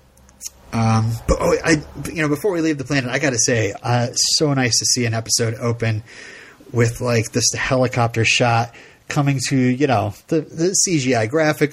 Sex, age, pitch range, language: male, 30-49, 110-140 Hz, English